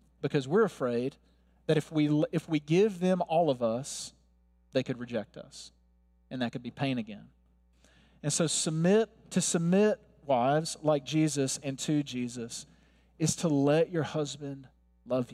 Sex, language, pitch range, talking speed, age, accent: male, English, 130-165 Hz, 155 wpm, 40-59, American